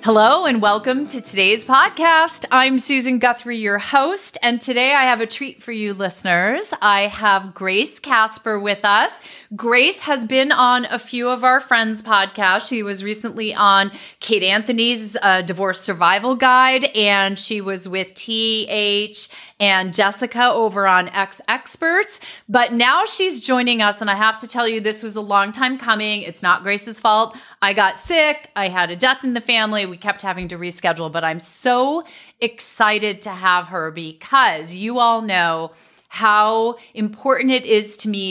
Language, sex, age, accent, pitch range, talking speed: English, female, 30-49, American, 185-245 Hz, 170 wpm